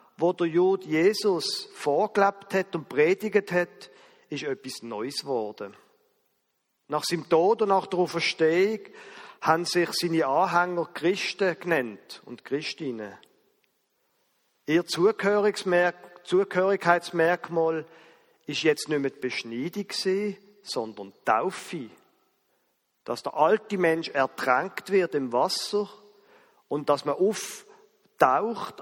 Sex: male